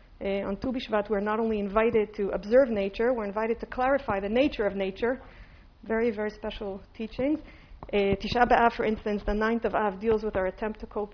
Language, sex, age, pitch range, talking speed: English, female, 40-59, 200-245 Hz, 200 wpm